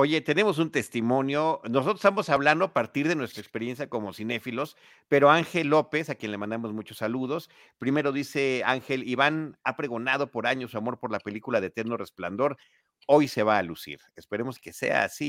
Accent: Mexican